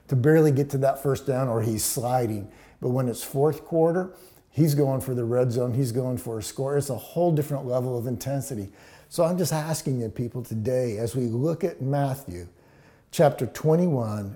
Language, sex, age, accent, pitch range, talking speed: English, male, 50-69, American, 120-150 Hz, 195 wpm